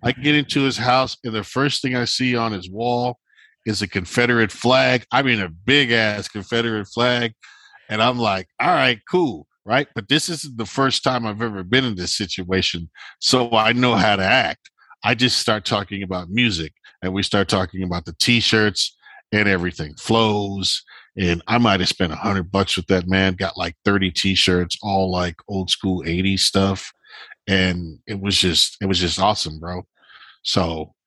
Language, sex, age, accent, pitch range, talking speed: English, male, 40-59, American, 95-120 Hz, 185 wpm